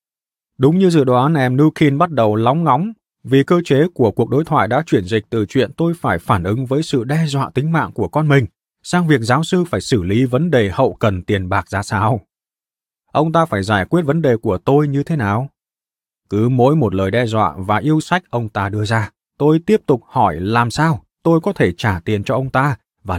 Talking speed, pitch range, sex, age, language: 235 wpm, 105-150 Hz, male, 20-39, Vietnamese